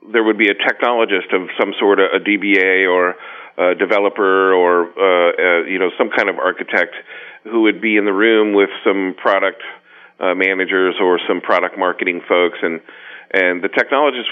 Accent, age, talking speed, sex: American, 40-59, 180 wpm, male